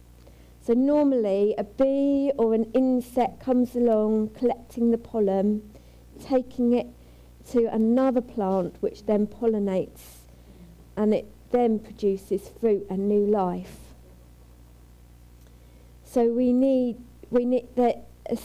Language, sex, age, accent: English, female, 40-59, British